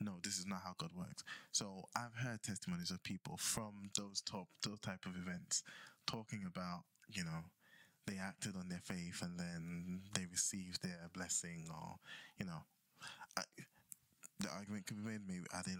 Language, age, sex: English, 20-39, male